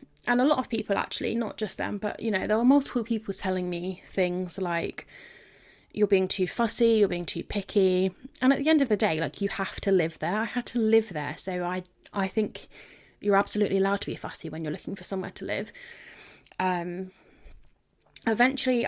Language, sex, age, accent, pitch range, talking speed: English, female, 20-39, British, 185-215 Hz, 205 wpm